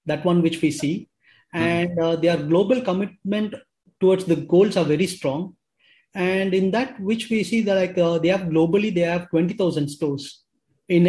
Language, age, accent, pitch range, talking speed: English, 20-39, Indian, 165-195 Hz, 175 wpm